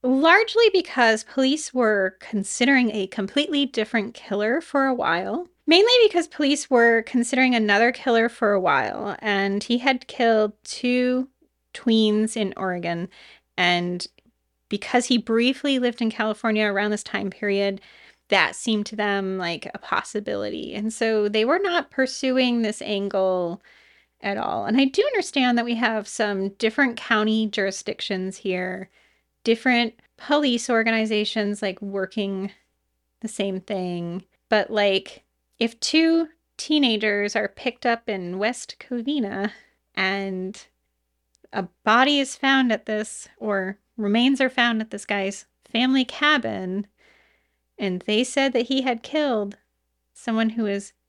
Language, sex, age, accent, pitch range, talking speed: English, female, 30-49, American, 200-255 Hz, 135 wpm